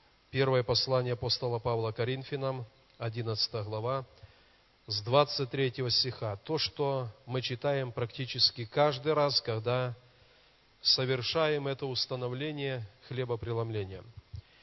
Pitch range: 120-145 Hz